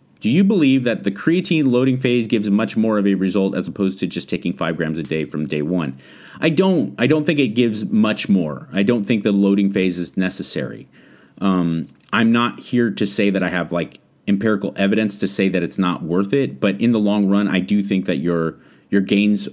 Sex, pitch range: male, 90-110 Hz